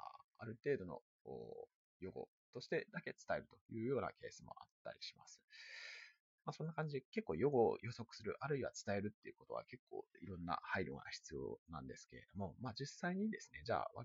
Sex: male